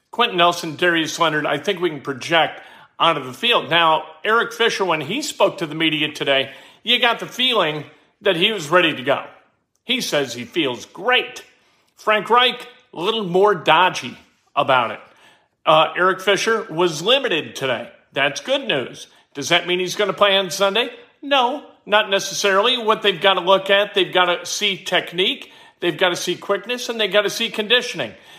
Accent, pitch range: American, 165-215 Hz